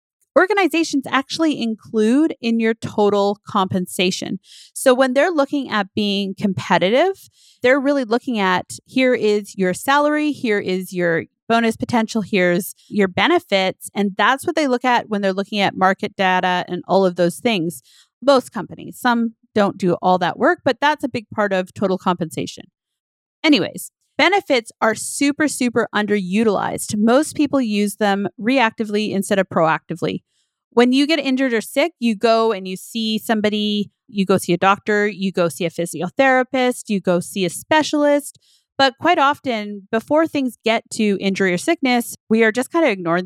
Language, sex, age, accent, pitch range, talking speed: English, female, 30-49, American, 195-260 Hz, 165 wpm